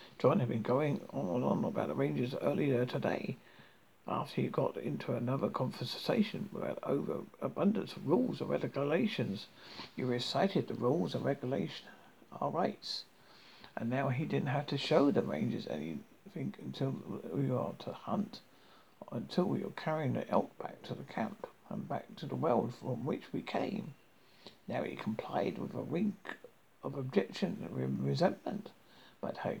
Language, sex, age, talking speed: English, male, 60-79, 160 wpm